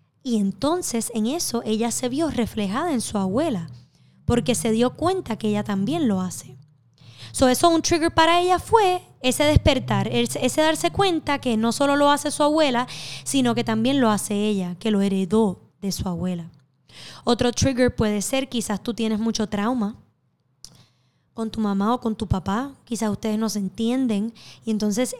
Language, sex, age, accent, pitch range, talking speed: Spanish, female, 10-29, American, 205-255 Hz, 175 wpm